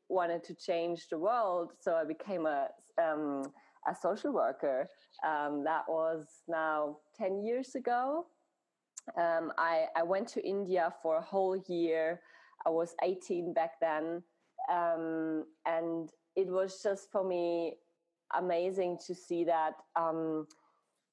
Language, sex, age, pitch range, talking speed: English, female, 30-49, 165-190 Hz, 135 wpm